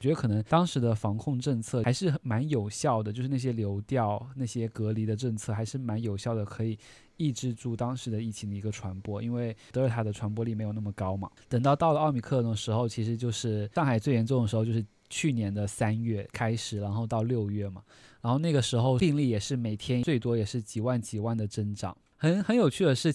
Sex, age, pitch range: male, 20-39, 110-135 Hz